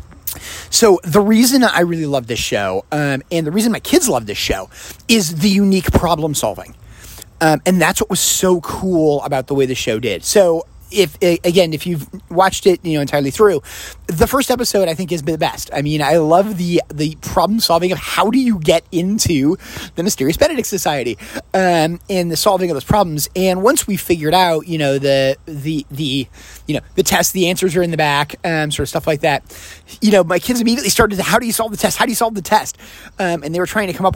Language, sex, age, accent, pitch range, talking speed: English, male, 30-49, American, 150-195 Hz, 230 wpm